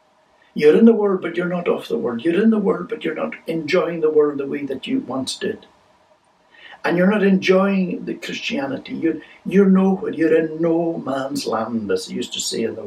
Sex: male